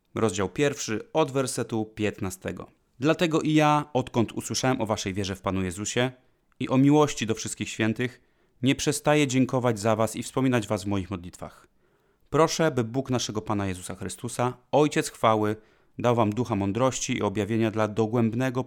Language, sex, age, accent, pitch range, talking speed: Polish, male, 30-49, native, 105-125 Hz, 160 wpm